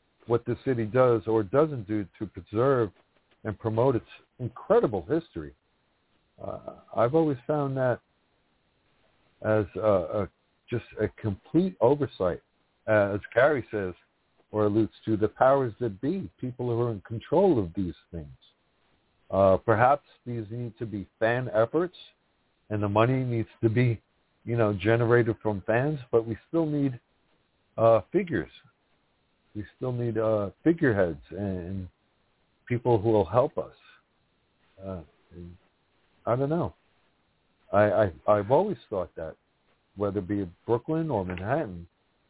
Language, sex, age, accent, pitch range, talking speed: English, male, 60-79, American, 100-120 Hz, 140 wpm